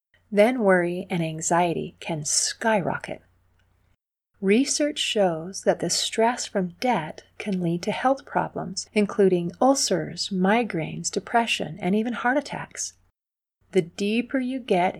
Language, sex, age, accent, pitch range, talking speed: English, female, 40-59, American, 175-230 Hz, 120 wpm